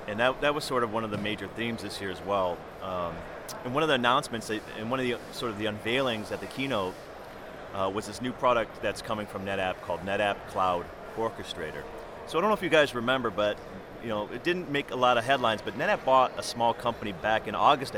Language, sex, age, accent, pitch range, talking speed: English, male, 30-49, American, 105-125 Hz, 235 wpm